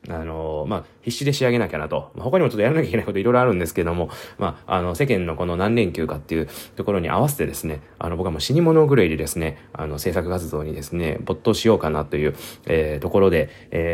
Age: 20-39